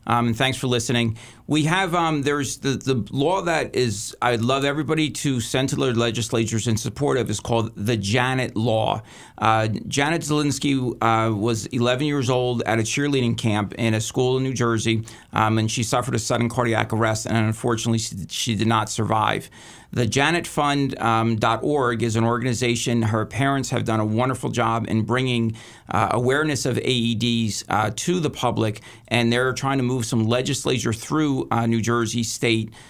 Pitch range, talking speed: 115-130 Hz, 175 wpm